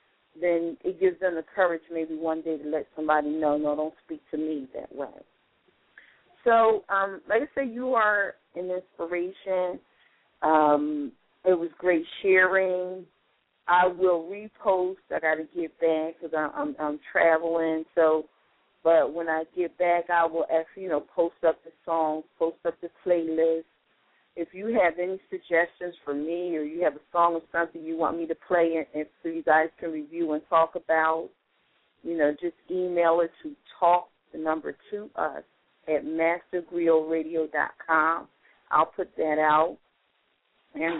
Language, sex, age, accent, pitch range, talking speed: English, female, 40-59, American, 160-185 Hz, 165 wpm